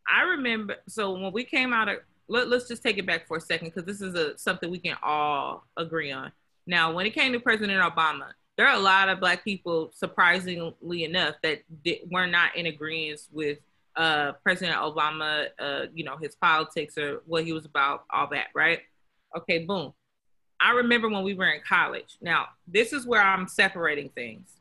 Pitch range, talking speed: 170-230 Hz, 195 wpm